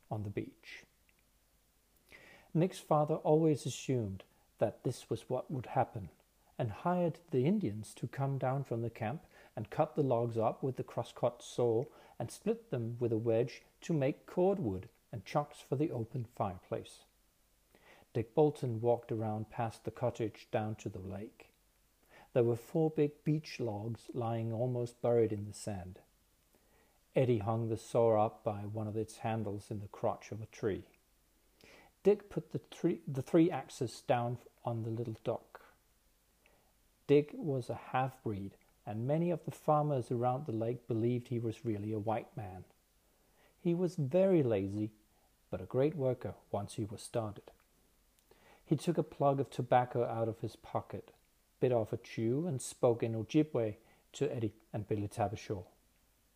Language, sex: Danish, male